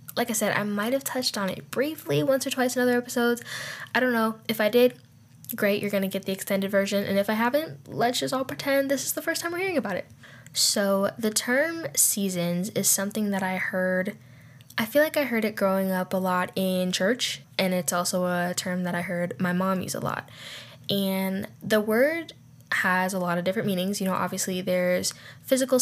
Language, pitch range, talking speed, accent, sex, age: English, 185-220 Hz, 220 wpm, American, female, 10-29